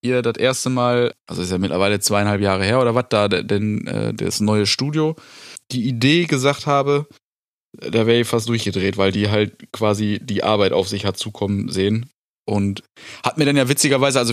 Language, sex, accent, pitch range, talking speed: German, male, German, 105-130 Hz, 195 wpm